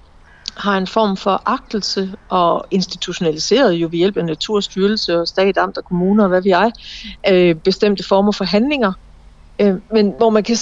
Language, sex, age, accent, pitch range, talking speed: Danish, female, 60-79, native, 185-215 Hz, 160 wpm